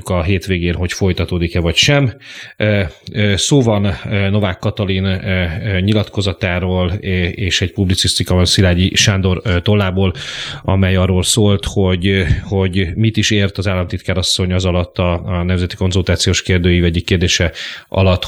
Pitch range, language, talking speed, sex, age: 90-105 Hz, Hungarian, 120 wpm, male, 30-49